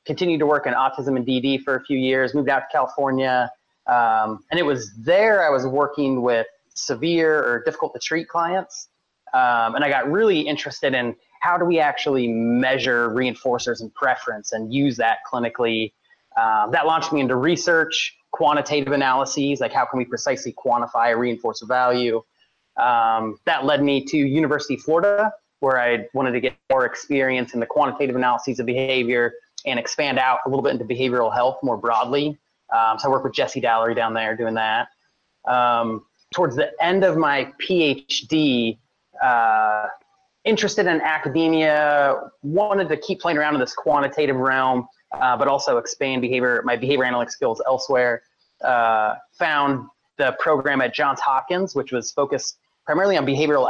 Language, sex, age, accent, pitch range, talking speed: English, male, 30-49, American, 125-155 Hz, 170 wpm